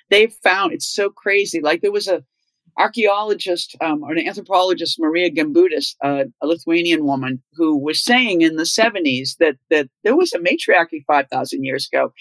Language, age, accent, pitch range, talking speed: English, 50-69, American, 170-235 Hz, 170 wpm